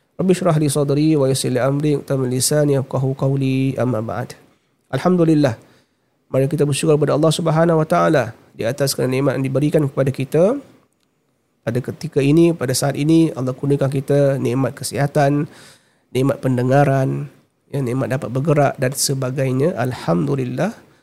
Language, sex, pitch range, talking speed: Malay, male, 130-155 Hz, 145 wpm